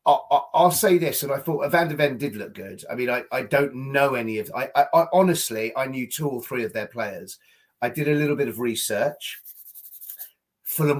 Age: 30-49